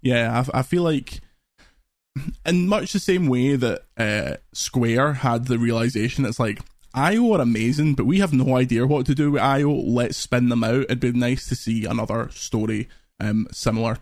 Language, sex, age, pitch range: English, male, 20-39, 120-150 Hz